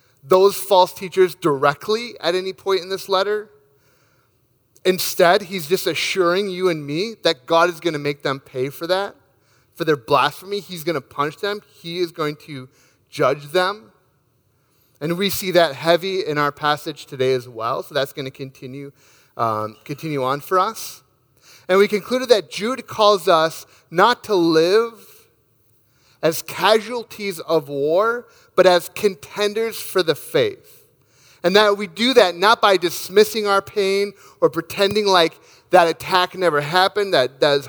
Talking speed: 160 wpm